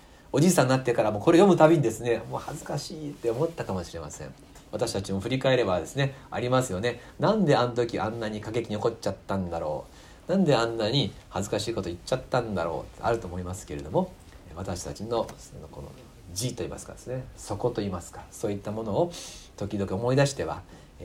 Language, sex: Japanese, male